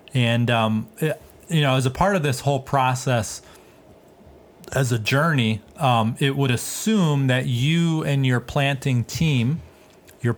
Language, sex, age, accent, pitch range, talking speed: English, male, 30-49, American, 115-140 Hz, 150 wpm